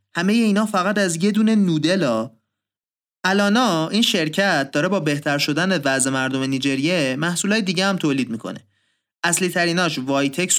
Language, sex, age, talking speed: Persian, male, 30-49, 140 wpm